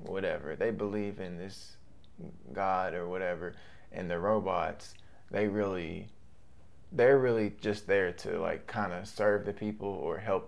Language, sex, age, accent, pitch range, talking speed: English, male, 20-39, American, 90-105 Hz, 145 wpm